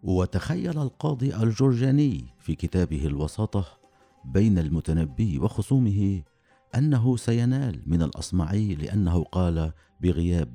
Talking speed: 90 wpm